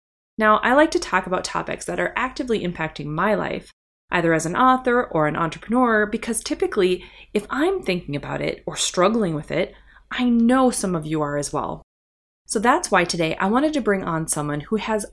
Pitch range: 165-250 Hz